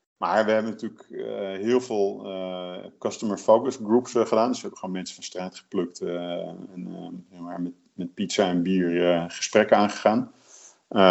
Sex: male